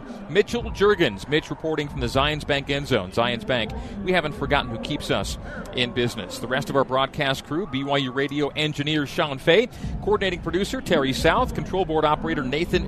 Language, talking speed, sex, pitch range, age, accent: English, 180 wpm, male, 125-150 Hz, 40-59, American